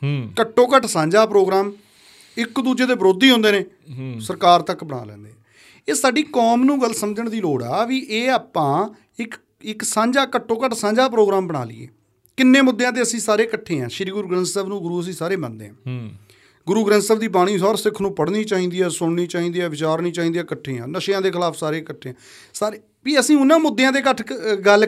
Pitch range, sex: 150-215 Hz, male